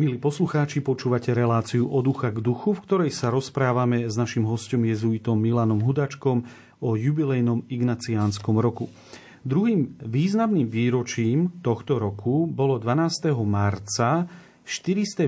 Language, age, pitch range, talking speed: Slovak, 40-59, 120-145 Hz, 120 wpm